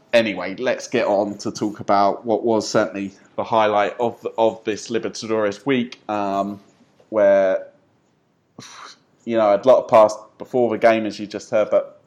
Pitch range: 95-115 Hz